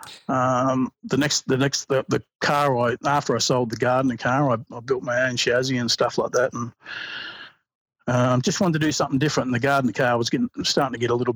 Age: 40-59